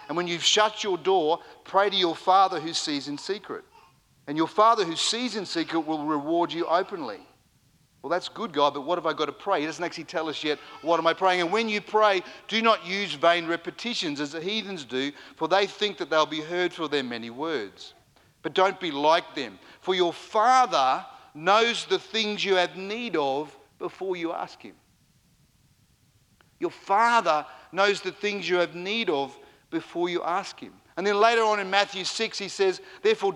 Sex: male